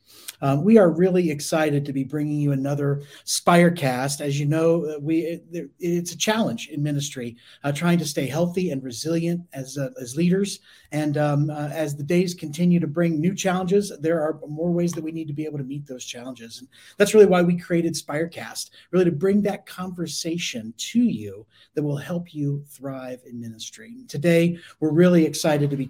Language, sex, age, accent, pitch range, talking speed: English, male, 30-49, American, 140-175 Hz, 195 wpm